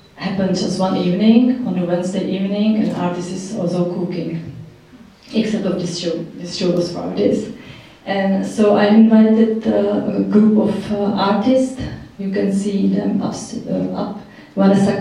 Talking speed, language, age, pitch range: 165 wpm, English, 30-49, 175-200 Hz